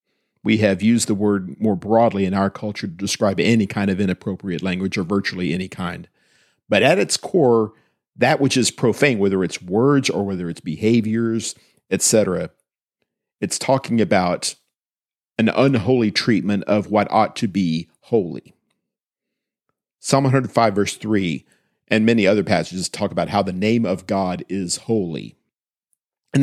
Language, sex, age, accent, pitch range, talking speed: English, male, 50-69, American, 95-115 Hz, 150 wpm